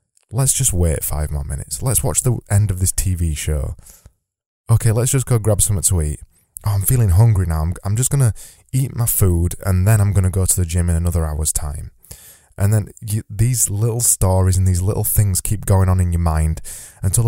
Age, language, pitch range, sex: 20-39, English, 85-110 Hz, male